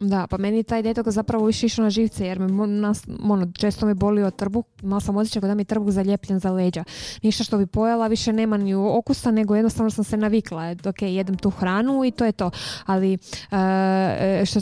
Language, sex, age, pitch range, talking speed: Croatian, female, 20-39, 185-225 Hz, 220 wpm